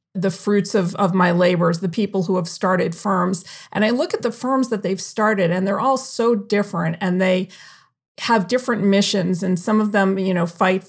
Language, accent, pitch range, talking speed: English, American, 180-200 Hz, 210 wpm